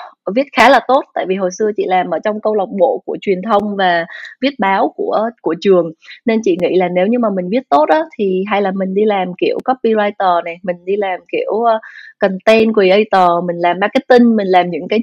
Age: 20-39